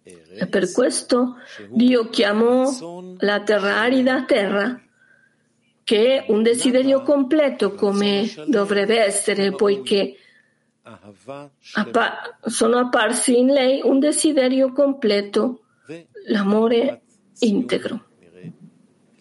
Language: Italian